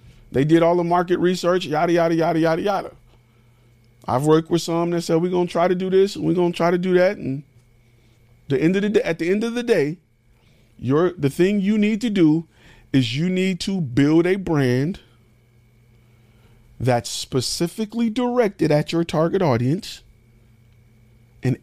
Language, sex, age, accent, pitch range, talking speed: English, male, 40-59, American, 115-175 Hz, 180 wpm